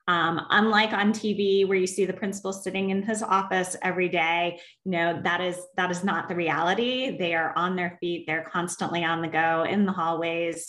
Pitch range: 160-185 Hz